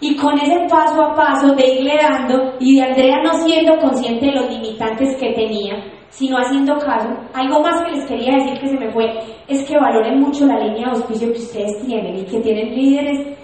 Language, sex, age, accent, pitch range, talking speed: Spanish, female, 20-39, Colombian, 230-290 Hz, 215 wpm